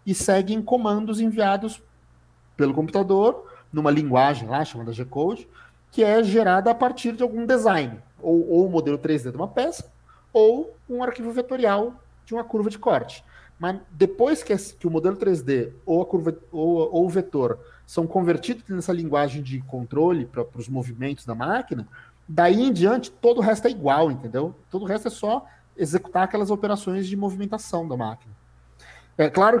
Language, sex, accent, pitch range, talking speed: Portuguese, male, Brazilian, 135-210 Hz, 165 wpm